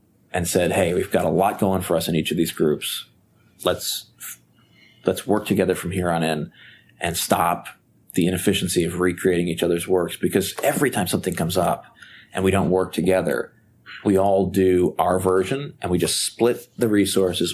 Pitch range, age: 90-110 Hz, 30-49